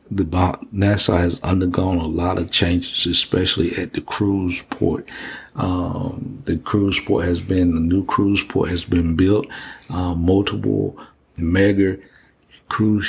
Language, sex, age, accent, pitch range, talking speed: English, male, 50-69, American, 80-95 Hz, 140 wpm